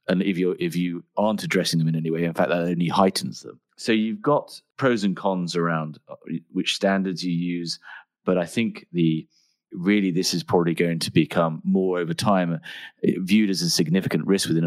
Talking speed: 195 wpm